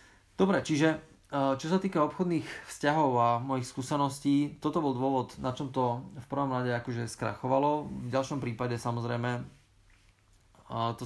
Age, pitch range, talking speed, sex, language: 30-49, 120-140 Hz, 140 wpm, male, Slovak